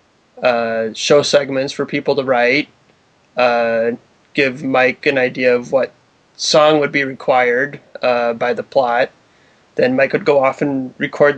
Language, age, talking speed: English, 20-39, 155 wpm